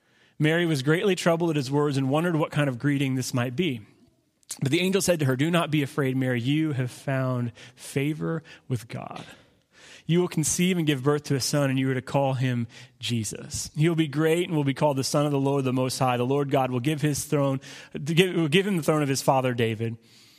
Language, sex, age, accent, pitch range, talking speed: English, male, 30-49, American, 130-170 Hz, 240 wpm